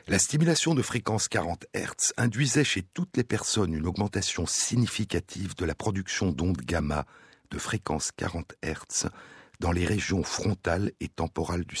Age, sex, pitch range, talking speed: 60-79, male, 85-115 Hz, 155 wpm